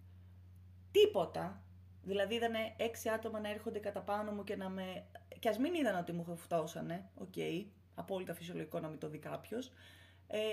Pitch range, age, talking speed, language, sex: 170-230 Hz, 20-39, 170 wpm, Greek, female